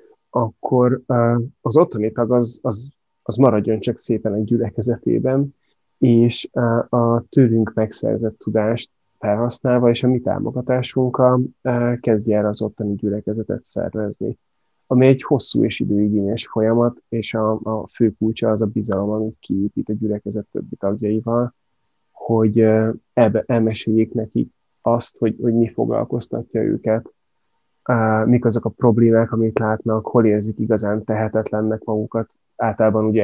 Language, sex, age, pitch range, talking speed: Hungarian, male, 30-49, 110-120 Hz, 125 wpm